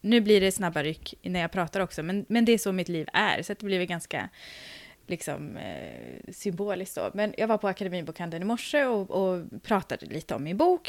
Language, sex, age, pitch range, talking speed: Swedish, female, 20-39, 180-270 Hz, 215 wpm